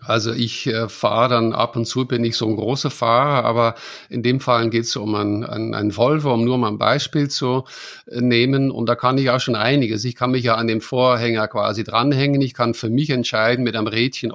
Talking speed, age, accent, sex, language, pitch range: 240 wpm, 50-69, German, male, German, 115-135 Hz